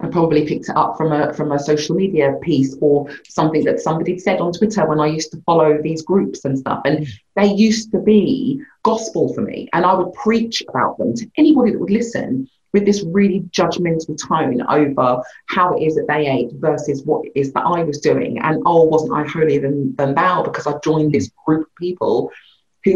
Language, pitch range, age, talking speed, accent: English, 145-180 Hz, 30-49, 215 wpm, British